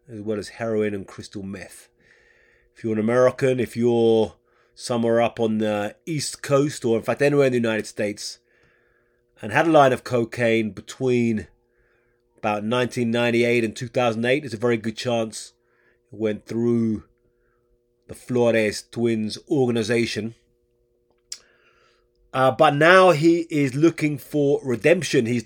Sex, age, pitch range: male, 30-49, 115-130 Hz